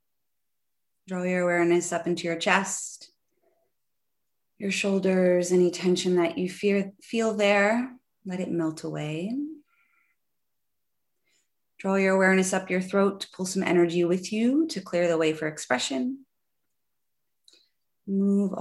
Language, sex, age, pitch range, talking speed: English, female, 30-49, 175-210 Hz, 125 wpm